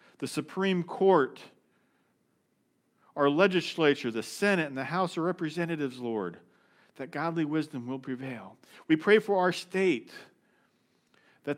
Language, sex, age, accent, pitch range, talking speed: English, male, 50-69, American, 135-165 Hz, 125 wpm